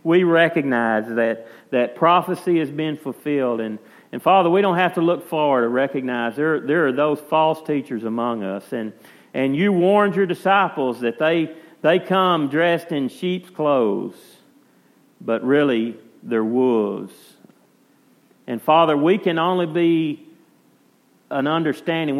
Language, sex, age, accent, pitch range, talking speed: English, male, 50-69, American, 120-165 Hz, 145 wpm